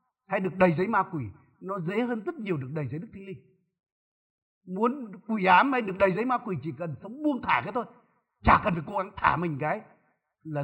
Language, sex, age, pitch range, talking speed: Vietnamese, male, 60-79, 175-245 Hz, 235 wpm